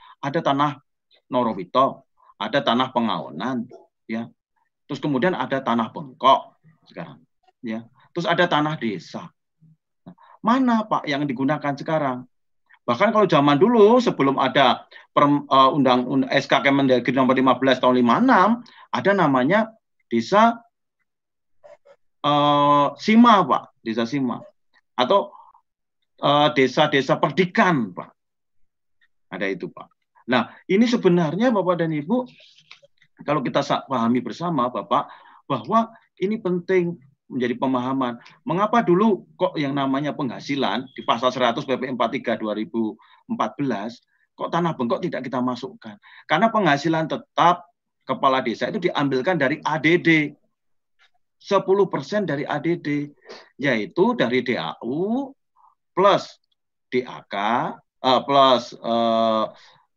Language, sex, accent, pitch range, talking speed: Indonesian, male, native, 130-195 Hz, 105 wpm